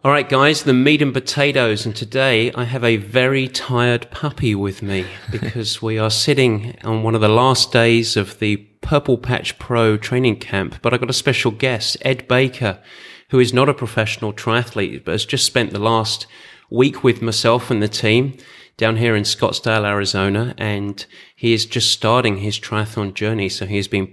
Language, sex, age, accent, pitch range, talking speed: English, male, 30-49, British, 105-125 Hz, 185 wpm